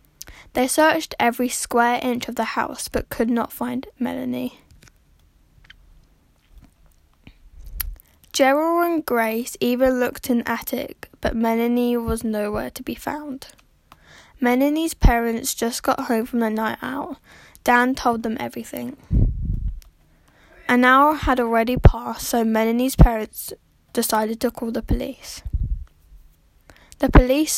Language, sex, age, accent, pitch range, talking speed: English, female, 10-29, British, 200-250 Hz, 120 wpm